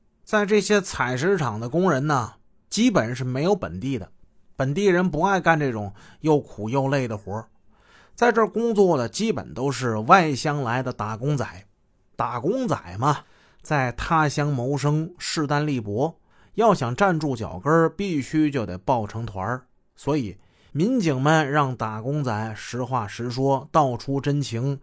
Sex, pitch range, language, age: male, 115-160 Hz, Chinese, 30-49